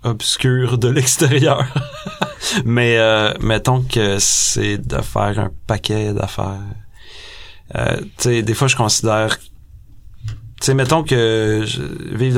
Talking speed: 110 wpm